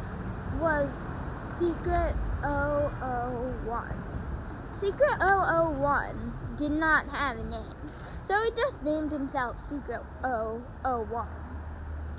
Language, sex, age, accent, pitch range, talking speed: English, female, 10-29, American, 235-310 Hz, 85 wpm